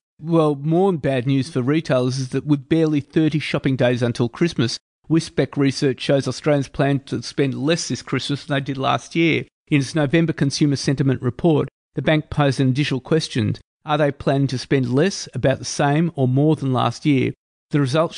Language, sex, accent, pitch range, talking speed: English, male, Australian, 130-160 Hz, 190 wpm